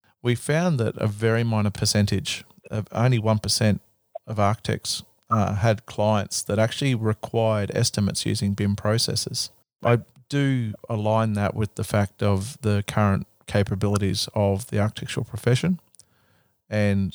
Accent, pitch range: Australian, 100-115 Hz